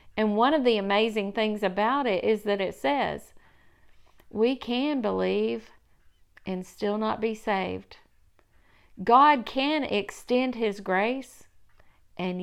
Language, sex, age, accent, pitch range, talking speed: English, female, 50-69, American, 180-235 Hz, 125 wpm